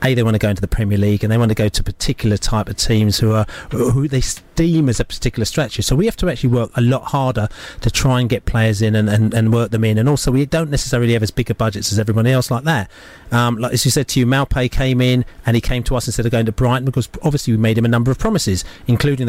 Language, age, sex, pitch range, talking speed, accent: English, 30-49, male, 115-140 Hz, 290 wpm, British